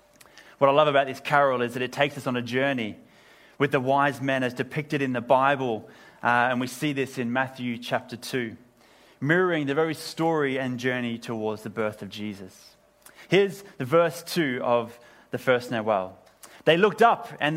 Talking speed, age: 190 wpm, 30-49